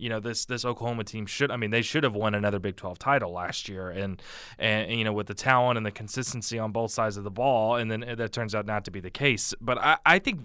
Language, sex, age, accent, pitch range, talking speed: English, male, 20-39, American, 110-125 Hz, 280 wpm